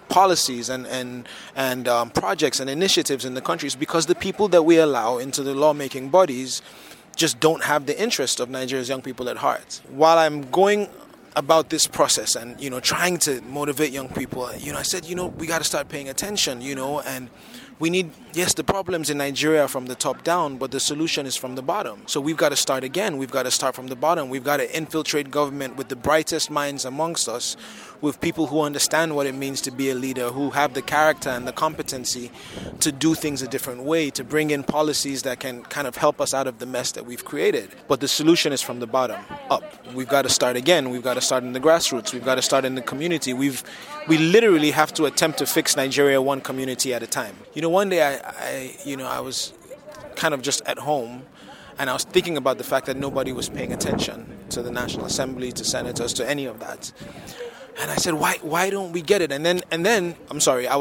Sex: male